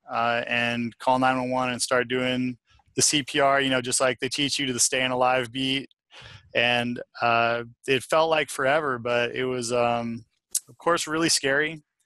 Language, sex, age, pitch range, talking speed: English, male, 20-39, 120-135 Hz, 185 wpm